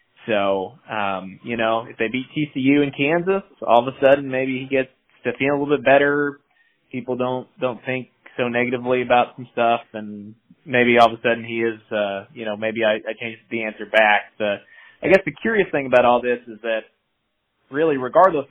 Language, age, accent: English, 20-39, American